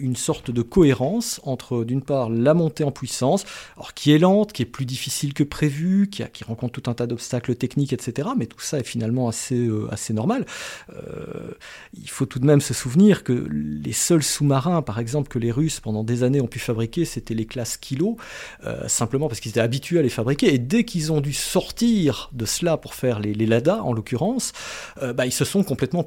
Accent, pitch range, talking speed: French, 120-155 Hz, 225 wpm